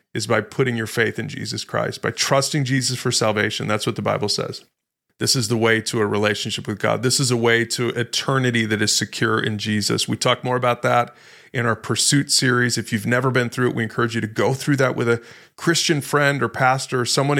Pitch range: 115-130 Hz